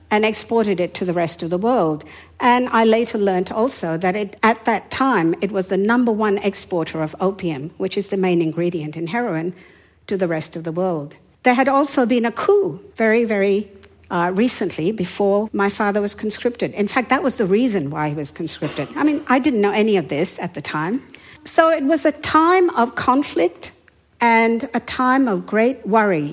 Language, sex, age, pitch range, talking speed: English, female, 60-79, 180-240 Hz, 200 wpm